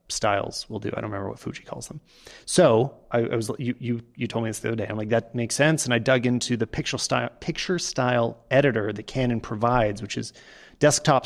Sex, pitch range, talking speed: male, 115-140 Hz, 235 wpm